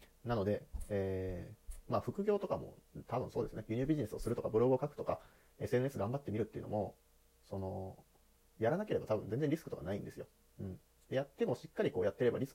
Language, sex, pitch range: Japanese, male, 100-160 Hz